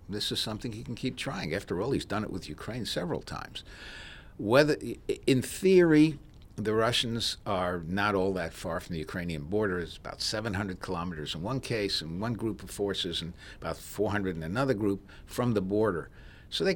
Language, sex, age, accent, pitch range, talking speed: English, male, 60-79, American, 90-115 Hz, 190 wpm